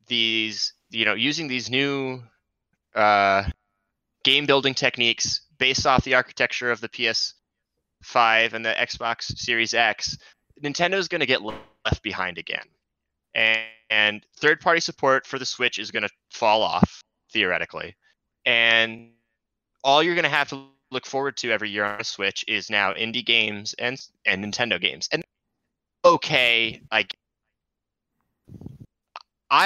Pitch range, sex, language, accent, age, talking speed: 110-140 Hz, male, English, American, 20-39, 140 wpm